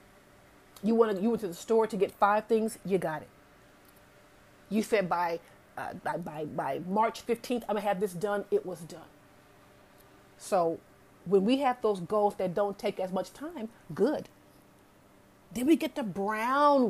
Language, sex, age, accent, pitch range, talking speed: English, female, 30-49, American, 195-245 Hz, 165 wpm